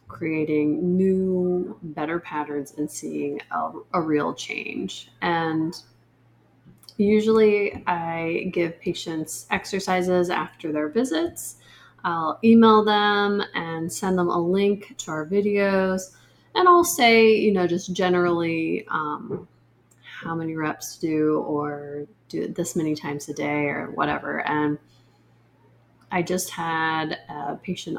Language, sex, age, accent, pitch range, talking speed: English, female, 30-49, American, 150-205 Hz, 125 wpm